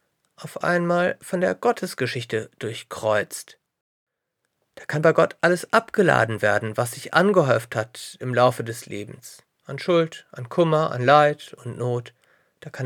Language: German